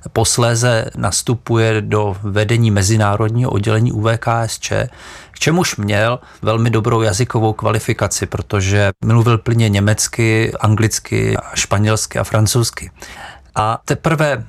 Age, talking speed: 40-59, 100 wpm